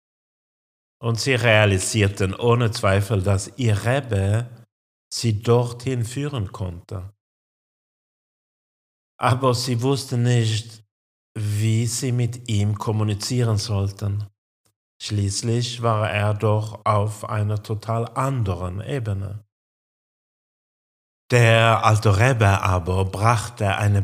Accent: German